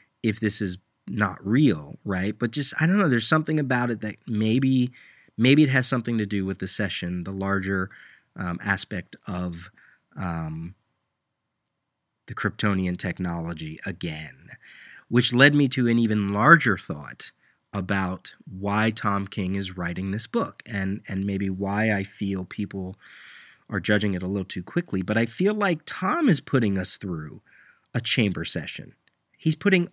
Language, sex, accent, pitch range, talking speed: English, male, American, 95-130 Hz, 160 wpm